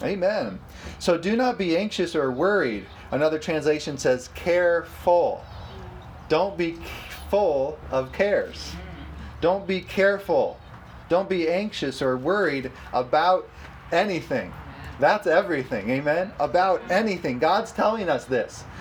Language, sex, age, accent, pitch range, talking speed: English, male, 30-49, American, 135-195 Hz, 115 wpm